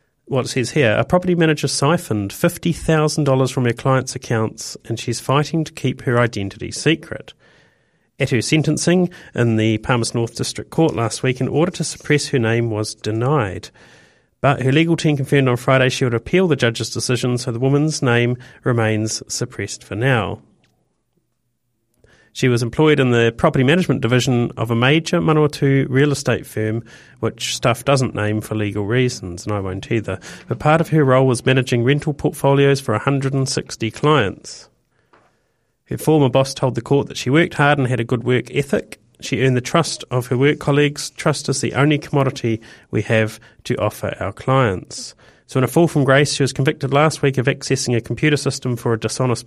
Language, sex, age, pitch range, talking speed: English, male, 40-59, 115-145 Hz, 185 wpm